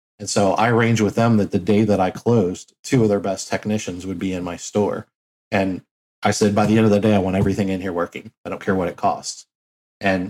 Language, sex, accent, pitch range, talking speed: English, male, American, 95-115 Hz, 255 wpm